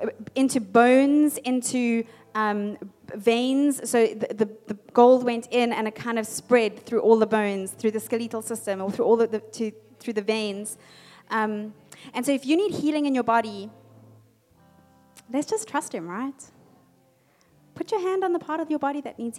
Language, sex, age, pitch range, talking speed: English, female, 20-39, 215-260 Hz, 185 wpm